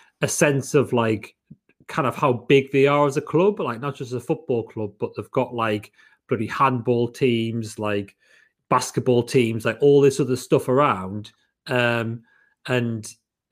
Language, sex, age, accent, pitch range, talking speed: English, male, 30-49, British, 110-135 Hz, 170 wpm